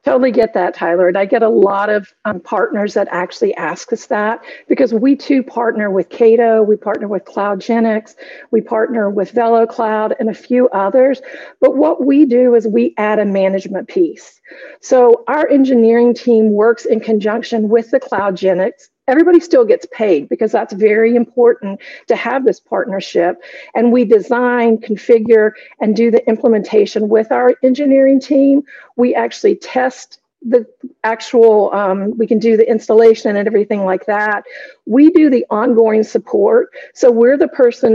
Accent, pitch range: American, 210-260 Hz